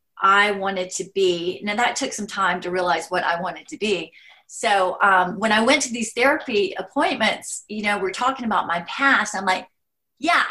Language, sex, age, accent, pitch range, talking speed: English, female, 30-49, American, 185-235 Hz, 200 wpm